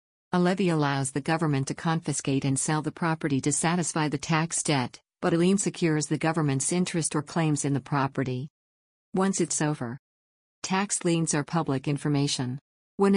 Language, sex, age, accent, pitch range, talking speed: English, female, 50-69, American, 140-170 Hz, 170 wpm